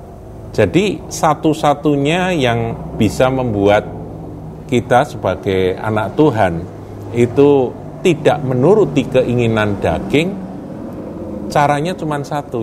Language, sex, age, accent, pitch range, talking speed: Indonesian, male, 50-69, native, 100-130 Hz, 80 wpm